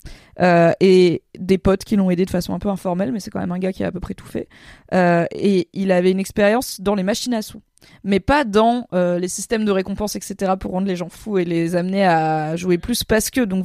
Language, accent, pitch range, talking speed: French, French, 185-230 Hz, 260 wpm